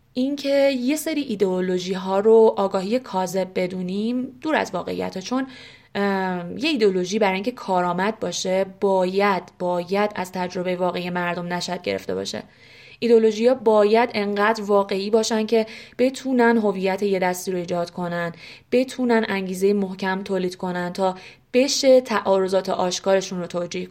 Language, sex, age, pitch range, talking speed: Persian, female, 20-39, 185-240 Hz, 130 wpm